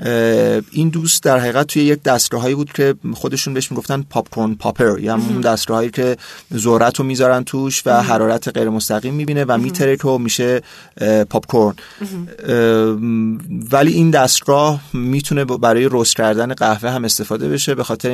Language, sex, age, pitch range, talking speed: Persian, male, 30-49, 115-140 Hz, 150 wpm